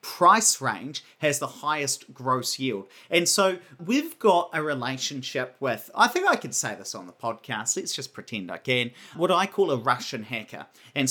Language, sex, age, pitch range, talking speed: English, male, 40-59, 125-180 Hz, 190 wpm